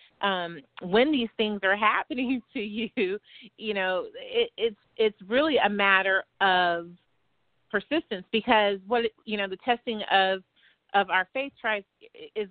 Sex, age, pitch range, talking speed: female, 30-49, 200-245 Hz, 145 wpm